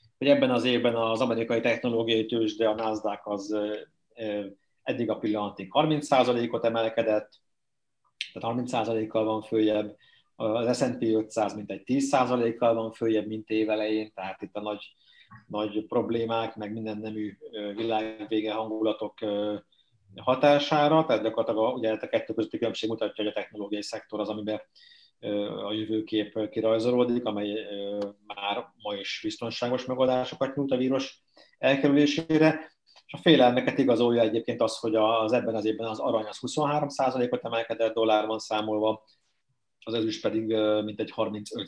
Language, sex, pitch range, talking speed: Hungarian, male, 105-125 Hz, 130 wpm